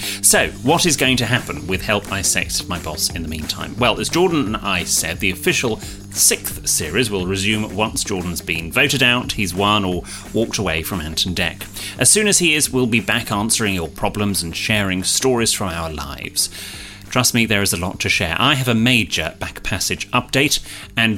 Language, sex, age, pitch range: English, male, 30-49, 90-125 Hz